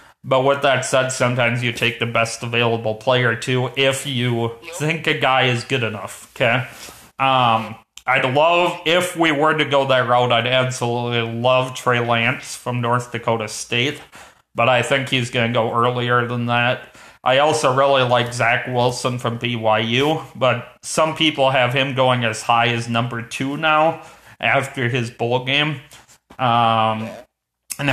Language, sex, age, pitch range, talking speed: English, male, 30-49, 120-140 Hz, 165 wpm